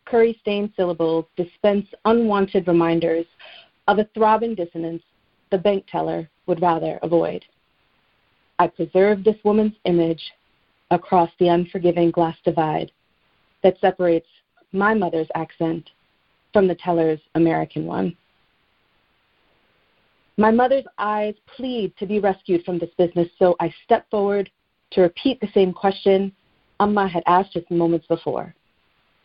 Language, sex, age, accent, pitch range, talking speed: English, female, 30-49, American, 170-215 Hz, 125 wpm